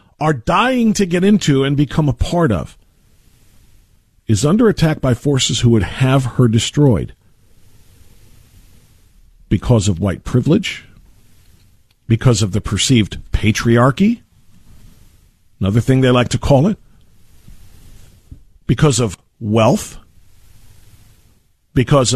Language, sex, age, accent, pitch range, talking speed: English, male, 50-69, American, 105-165 Hz, 110 wpm